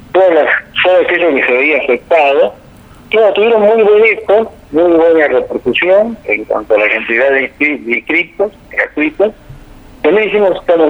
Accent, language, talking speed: American, Spanish, 145 wpm